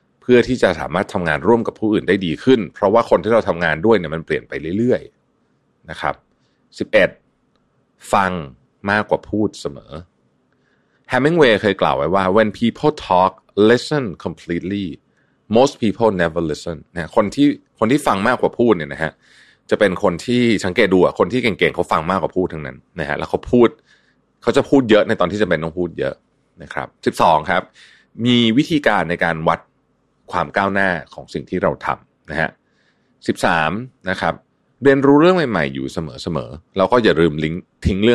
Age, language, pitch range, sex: 30-49, Thai, 80-120 Hz, male